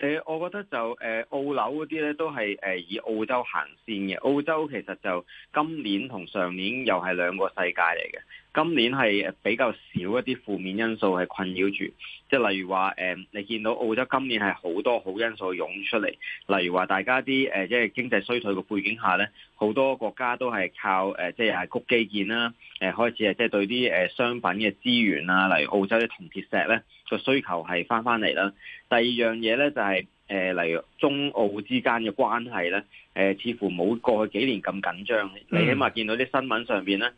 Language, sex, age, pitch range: Chinese, male, 20-39, 95-125 Hz